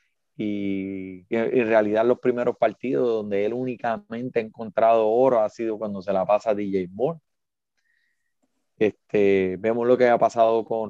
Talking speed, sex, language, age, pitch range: 150 wpm, male, Spanish, 30-49, 110-150 Hz